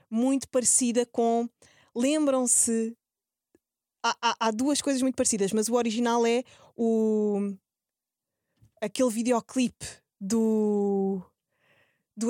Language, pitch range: Portuguese, 185-245 Hz